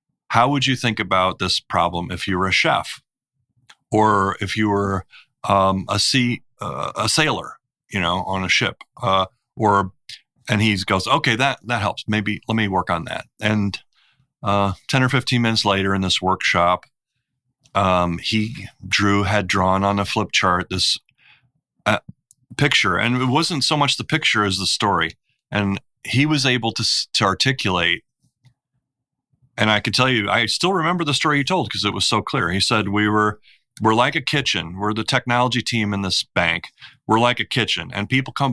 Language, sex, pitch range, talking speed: English, male, 100-125 Hz, 185 wpm